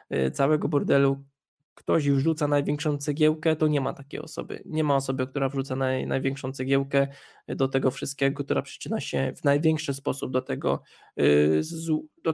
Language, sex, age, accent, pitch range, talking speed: Polish, male, 20-39, native, 135-145 Hz, 140 wpm